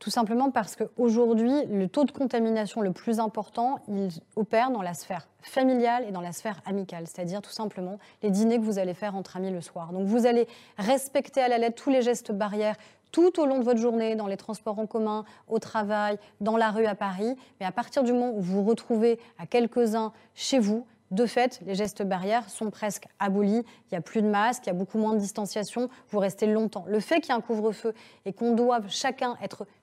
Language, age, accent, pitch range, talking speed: French, 30-49, French, 205-245 Hz, 225 wpm